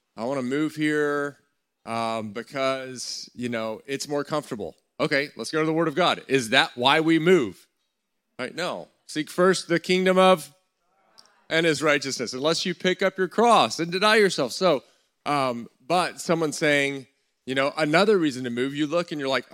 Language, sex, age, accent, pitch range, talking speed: English, male, 30-49, American, 130-165 Hz, 185 wpm